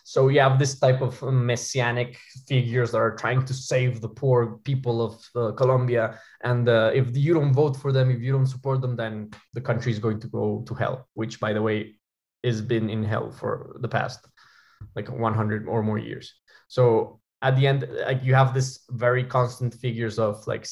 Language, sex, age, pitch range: English, male, 20-39, 115-130 Hz